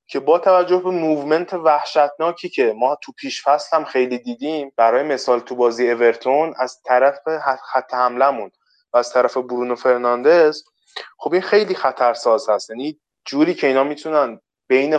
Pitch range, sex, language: 125-170 Hz, male, Persian